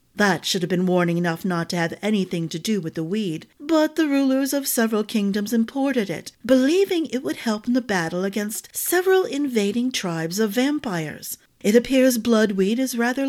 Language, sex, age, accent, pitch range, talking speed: English, female, 50-69, American, 185-250 Hz, 185 wpm